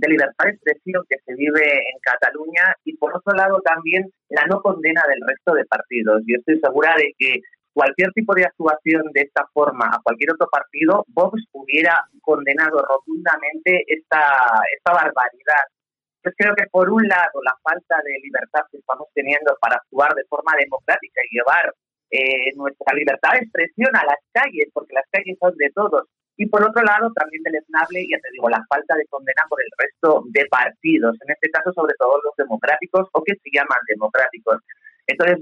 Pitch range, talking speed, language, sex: 150-195 Hz, 185 wpm, Spanish, male